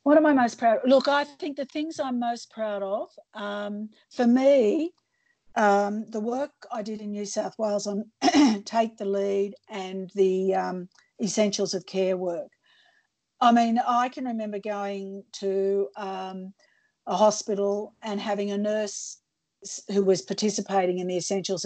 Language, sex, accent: English, female, Australian